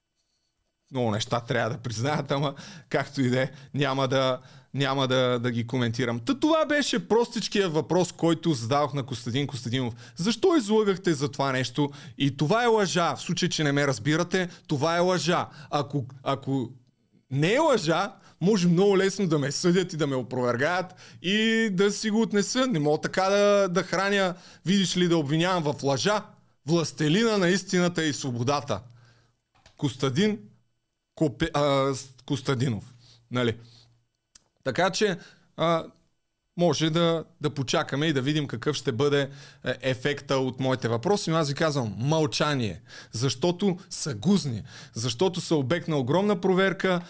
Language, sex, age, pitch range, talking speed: Bulgarian, male, 30-49, 130-185 Hz, 150 wpm